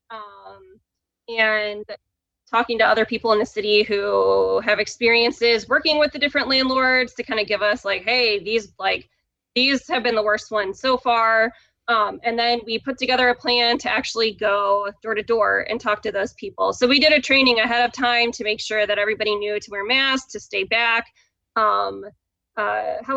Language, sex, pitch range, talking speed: English, female, 210-250 Hz, 195 wpm